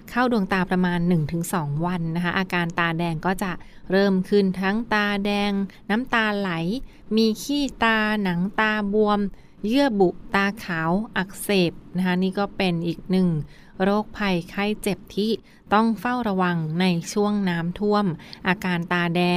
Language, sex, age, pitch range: Thai, female, 20-39, 175-200 Hz